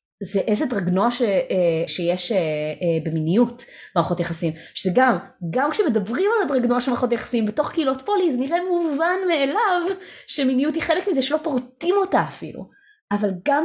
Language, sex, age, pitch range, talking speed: Hebrew, female, 20-39, 175-265 Hz, 145 wpm